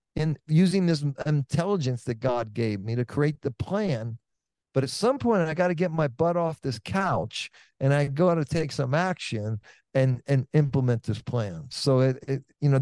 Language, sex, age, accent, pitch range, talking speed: English, male, 50-69, American, 115-155 Hz, 200 wpm